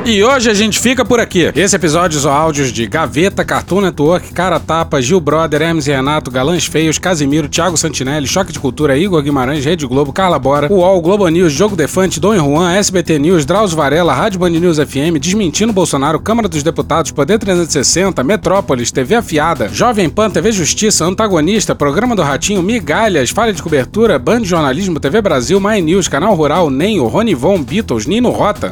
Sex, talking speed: male, 185 wpm